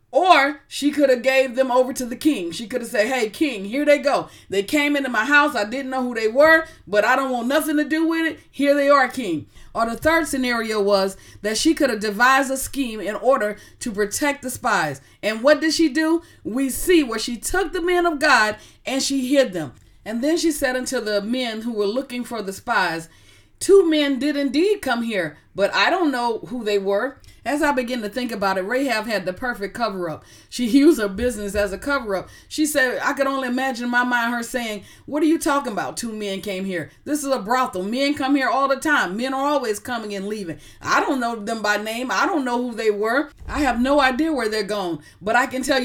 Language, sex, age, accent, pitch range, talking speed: English, female, 40-59, American, 220-295 Hz, 240 wpm